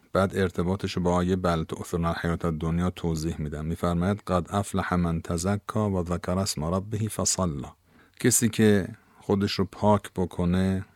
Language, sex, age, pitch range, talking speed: Persian, male, 50-69, 90-105 Hz, 140 wpm